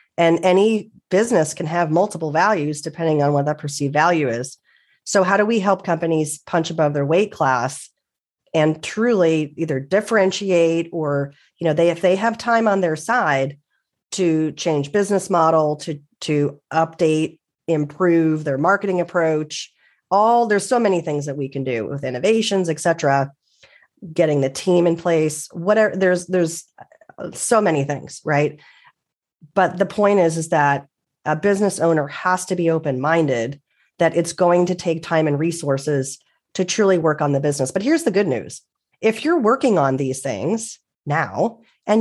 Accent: American